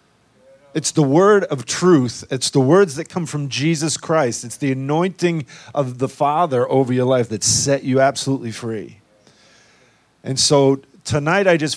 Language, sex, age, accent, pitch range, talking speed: English, male, 40-59, American, 110-145 Hz, 165 wpm